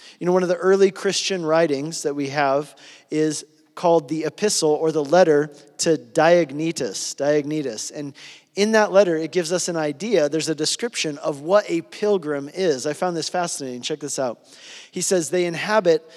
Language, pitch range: English, 155-195 Hz